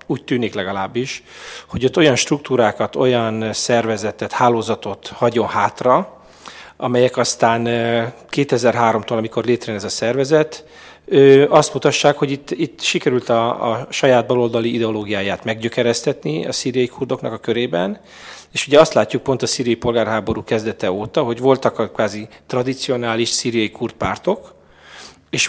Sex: male